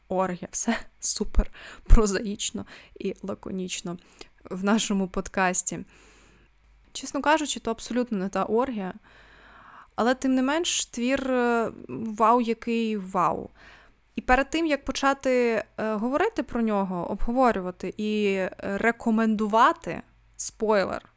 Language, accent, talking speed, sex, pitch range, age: Ukrainian, native, 105 wpm, female, 195-255 Hz, 20-39